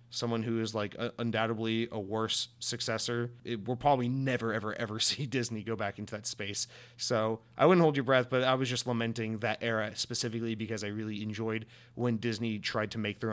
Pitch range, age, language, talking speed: 110-125 Hz, 30-49, English, 200 wpm